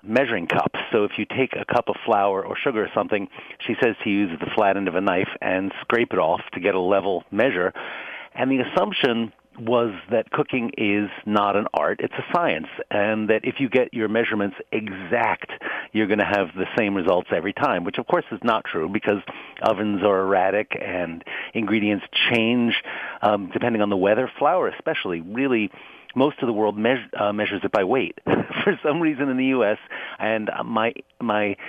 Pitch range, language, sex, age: 100-125 Hz, English, male, 50-69